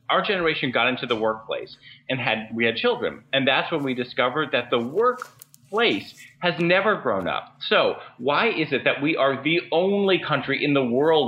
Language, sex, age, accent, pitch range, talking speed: English, male, 30-49, American, 125-170 Hz, 190 wpm